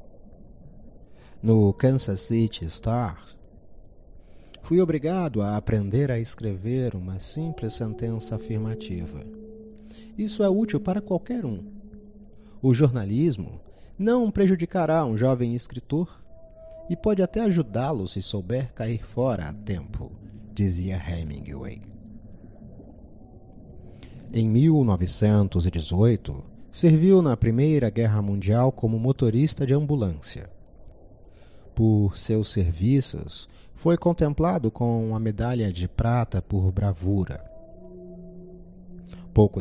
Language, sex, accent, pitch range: Portuguese, male, Brazilian, 95-140 Hz